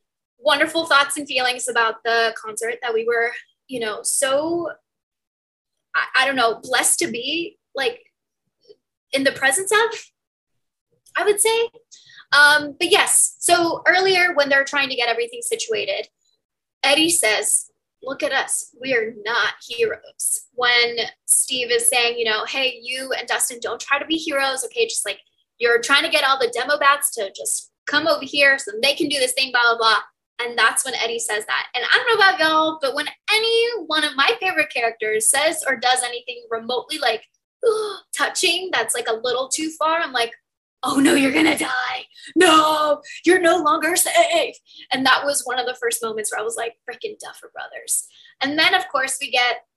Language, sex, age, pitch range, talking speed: English, female, 10-29, 250-365 Hz, 185 wpm